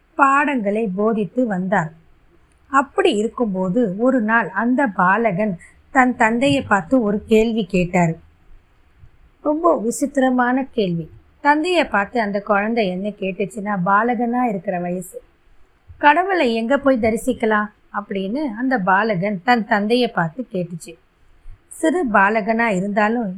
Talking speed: 95 wpm